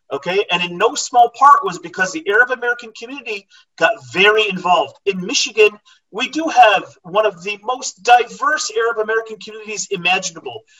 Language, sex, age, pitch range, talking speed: Arabic, male, 40-59, 180-255 Hz, 150 wpm